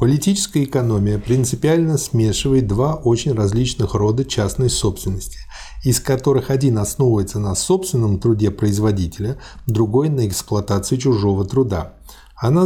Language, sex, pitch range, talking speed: Russian, male, 105-135 Hz, 115 wpm